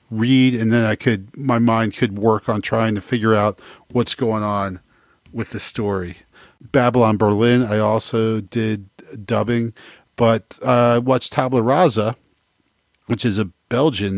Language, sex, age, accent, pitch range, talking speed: English, male, 40-59, American, 105-130 Hz, 150 wpm